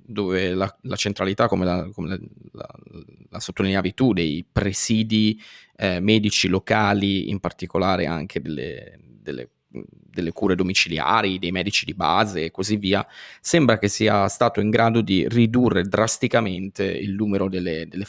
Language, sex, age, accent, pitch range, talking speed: Italian, male, 20-39, native, 95-110 Hz, 135 wpm